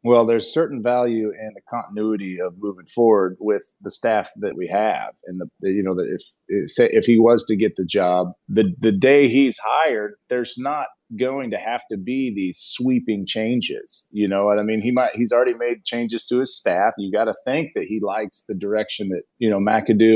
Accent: American